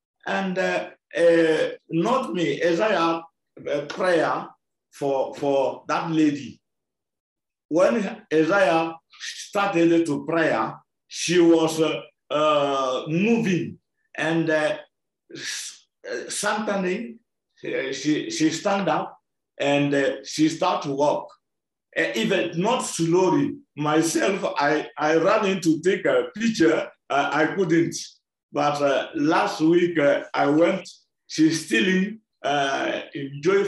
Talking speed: 110 wpm